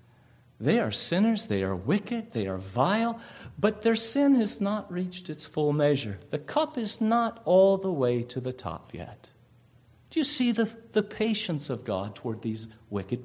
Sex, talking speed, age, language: male, 180 wpm, 50-69, English